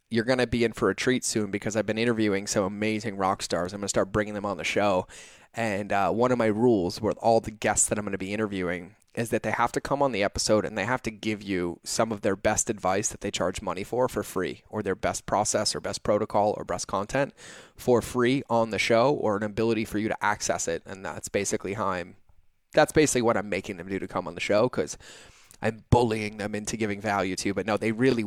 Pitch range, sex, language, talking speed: 100-120 Hz, male, English, 255 wpm